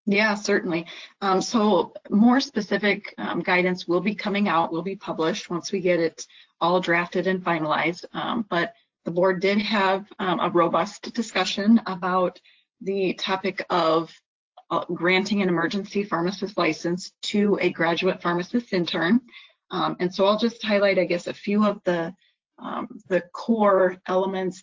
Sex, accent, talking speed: female, American, 155 wpm